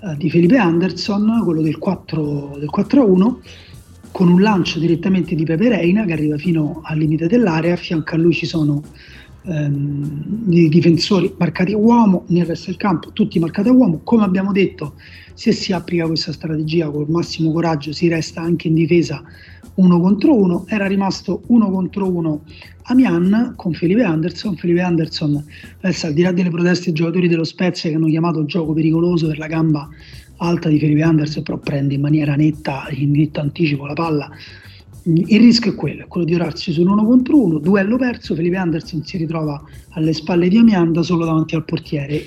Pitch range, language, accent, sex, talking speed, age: 155-190 Hz, Italian, native, male, 185 wpm, 30-49